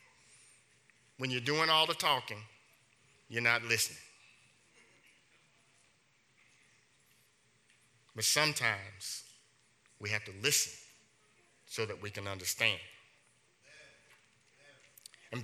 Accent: American